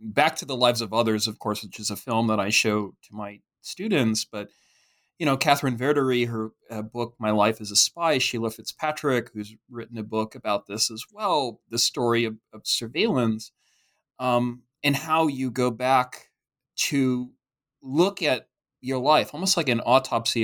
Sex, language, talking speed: male, English, 175 wpm